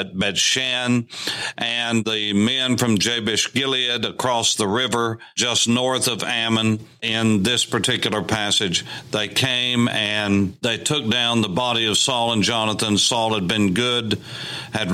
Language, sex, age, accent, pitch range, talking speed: English, male, 50-69, American, 105-120 Hz, 140 wpm